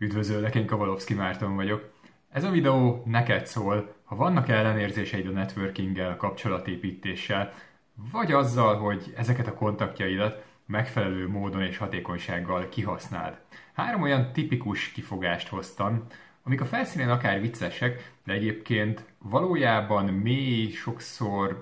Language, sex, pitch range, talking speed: Hungarian, male, 95-120 Hz, 120 wpm